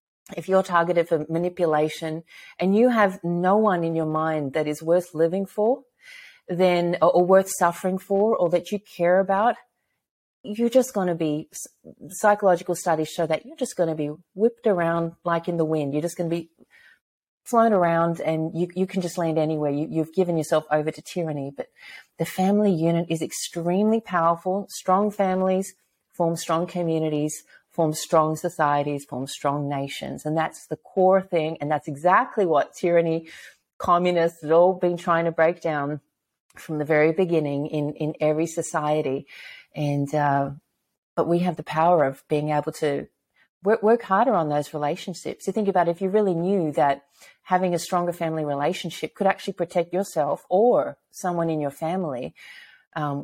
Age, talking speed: 40-59, 175 wpm